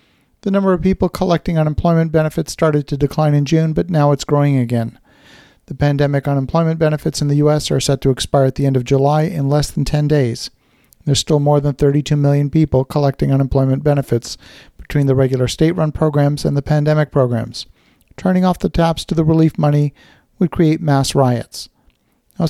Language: English